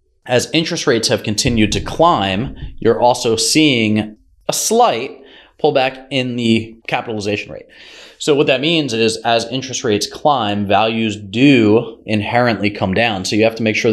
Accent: American